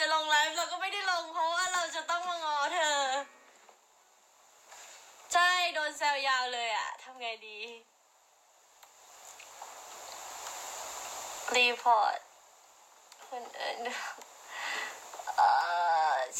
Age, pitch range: 20-39, 245-345 Hz